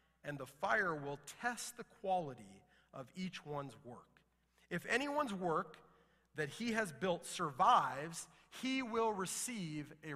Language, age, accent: English, 30-49, American